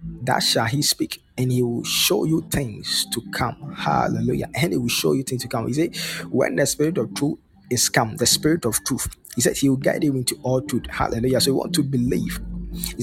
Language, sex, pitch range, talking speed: English, male, 125-155 Hz, 230 wpm